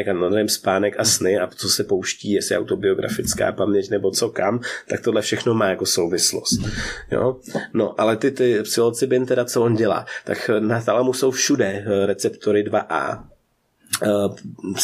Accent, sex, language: native, male, Czech